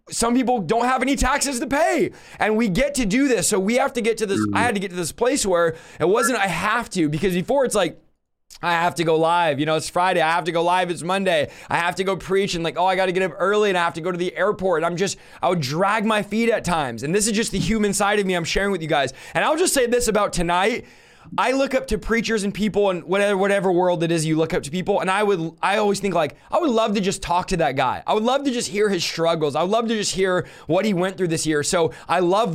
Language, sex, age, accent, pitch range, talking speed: English, male, 20-39, American, 170-225 Hz, 300 wpm